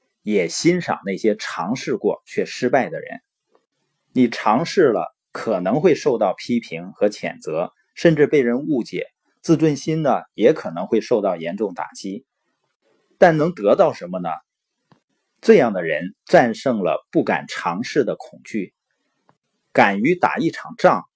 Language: Chinese